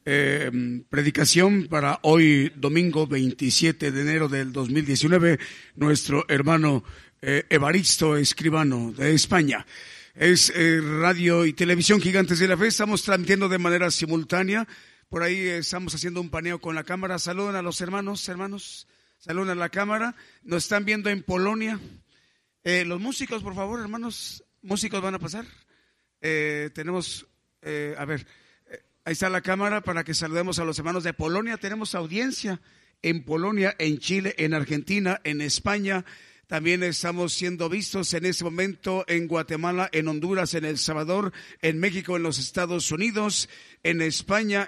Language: Spanish